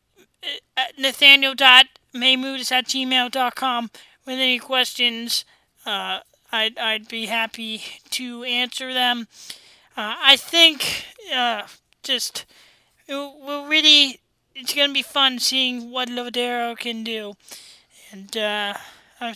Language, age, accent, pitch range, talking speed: English, 20-39, American, 235-265 Hz, 120 wpm